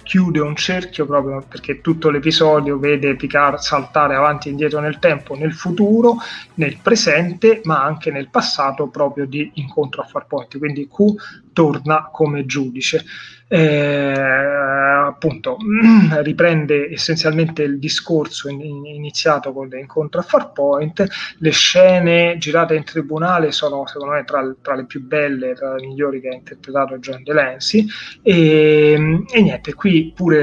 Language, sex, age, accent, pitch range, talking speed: Italian, male, 30-49, native, 145-165 Hz, 140 wpm